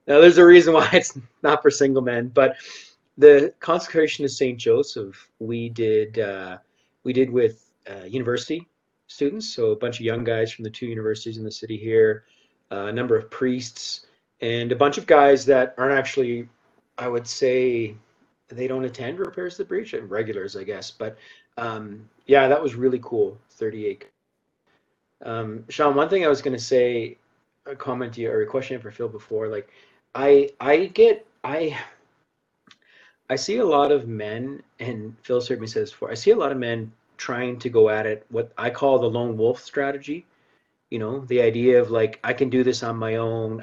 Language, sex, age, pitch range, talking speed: English, male, 30-49, 115-145 Hz, 195 wpm